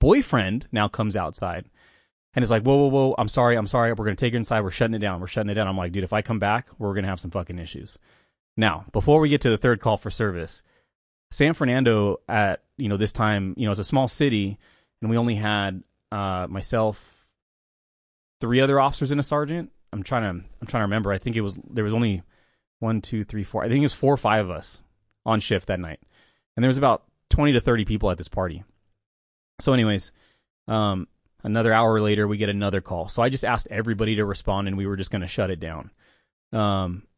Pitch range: 100-120 Hz